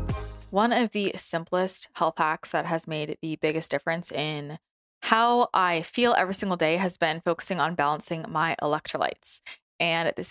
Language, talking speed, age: English, 165 wpm, 20-39